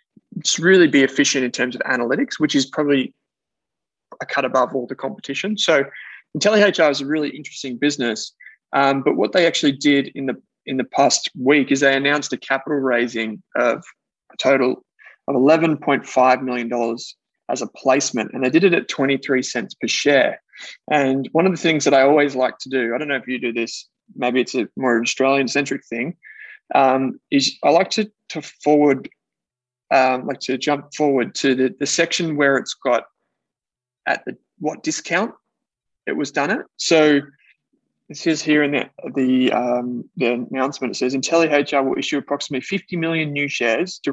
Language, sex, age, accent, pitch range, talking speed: English, male, 20-39, Australian, 130-160 Hz, 180 wpm